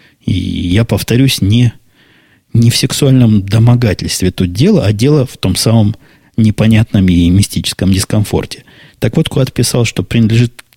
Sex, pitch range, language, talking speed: male, 100-125 Hz, Russian, 140 wpm